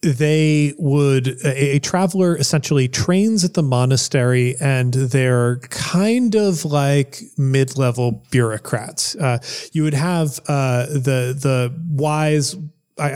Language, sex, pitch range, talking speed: English, male, 130-160 Hz, 125 wpm